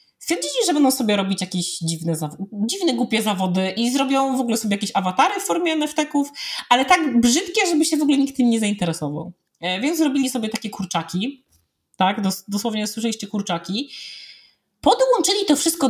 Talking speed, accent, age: 160 wpm, native, 30-49